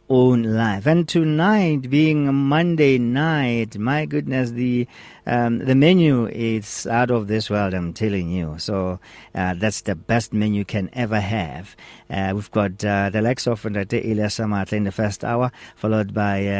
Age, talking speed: 50-69, 160 wpm